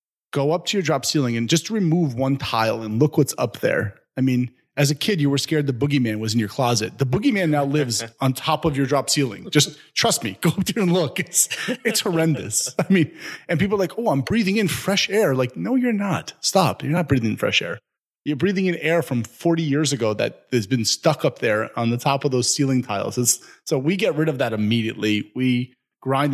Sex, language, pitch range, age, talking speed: male, English, 120-155 Hz, 30-49, 240 wpm